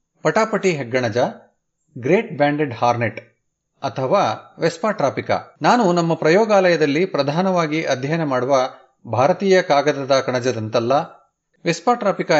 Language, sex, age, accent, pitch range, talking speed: Kannada, male, 30-49, native, 135-185 Hz, 80 wpm